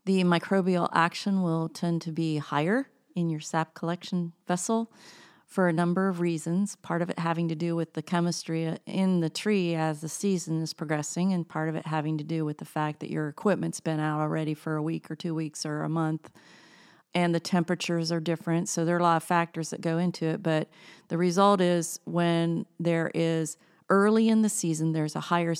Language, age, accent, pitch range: English, 40-59, American, 155-180 Hz